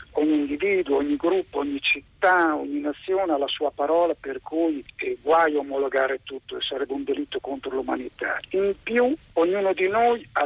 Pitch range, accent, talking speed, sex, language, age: 150-220 Hz, native, 170 wpm, male, Italian, 50-69